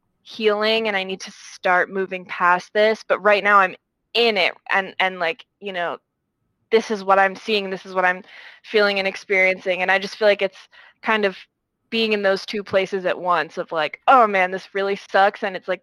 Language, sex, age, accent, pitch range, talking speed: English, female, 20-39, American, 185-215 Hz, 215 wpm